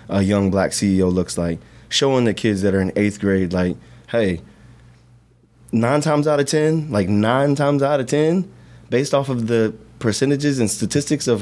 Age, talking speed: 20-39, 185 wpm